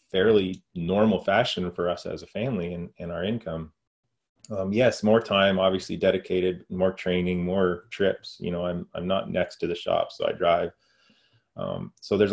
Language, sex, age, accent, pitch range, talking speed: English, male, 30-49, American, 90-120 Hz, 180 wpm